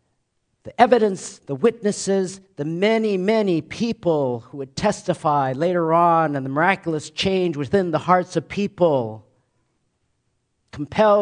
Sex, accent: male, American